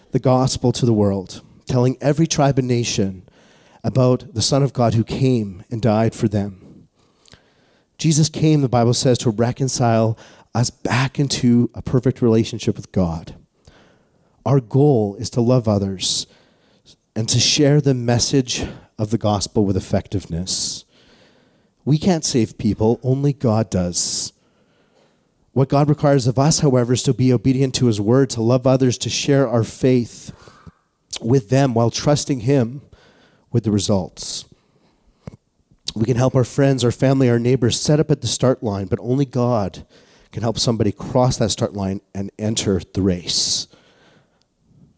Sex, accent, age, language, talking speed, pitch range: male, American, 40-59, English, 155 wpm, 110-135 Hz